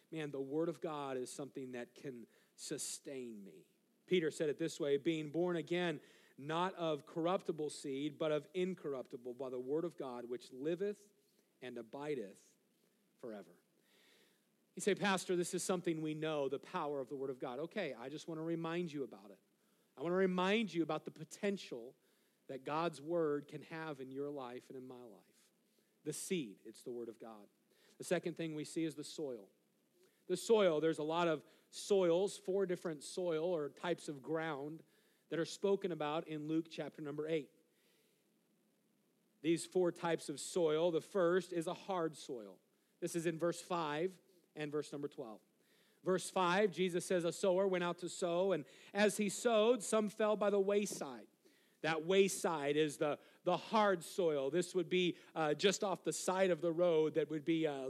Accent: American